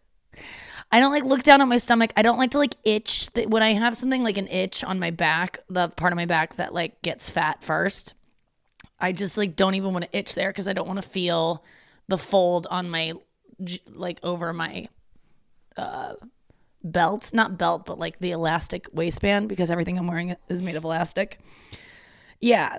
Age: 20-39